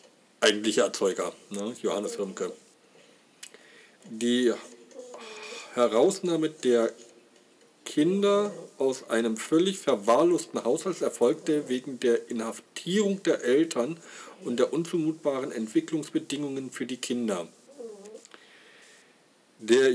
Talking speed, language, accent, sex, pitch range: 80 wpm, German, German, male, 120-180 Hz